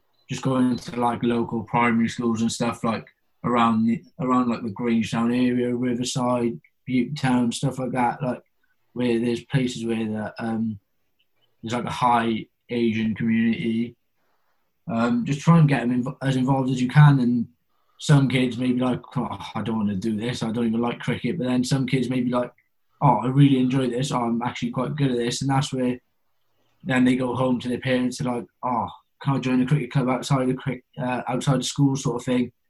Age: 20-39